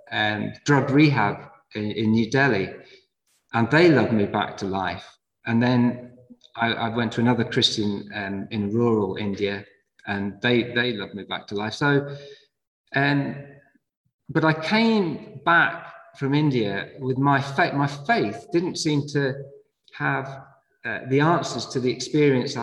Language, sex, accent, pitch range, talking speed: English, male, British, 115-145 Hz, 150 wpm